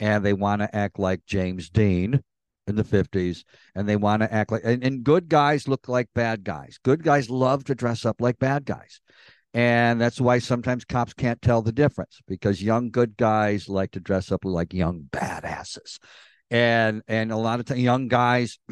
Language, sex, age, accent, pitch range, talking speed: English, male, 50-69, American, 110-150 Hz, 195 wpm